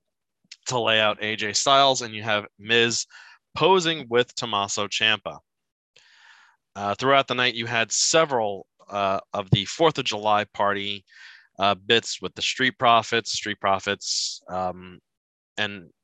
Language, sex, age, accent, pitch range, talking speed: English, male, 20-39, American, 95-115 Hz, 140 wpm